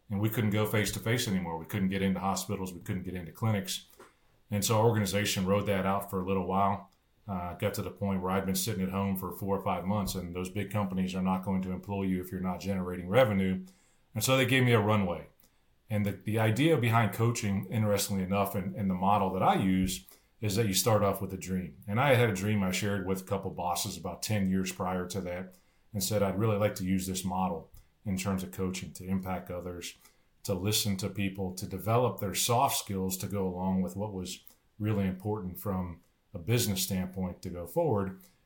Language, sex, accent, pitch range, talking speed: English, male, American, 95-110 Hz, 225 wpm